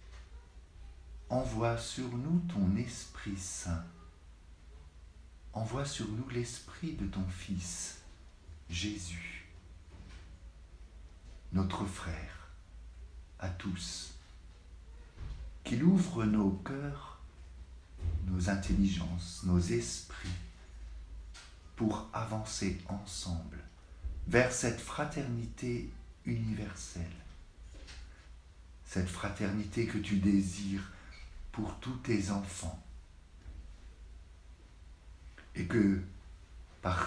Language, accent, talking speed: French, French, 75 wpm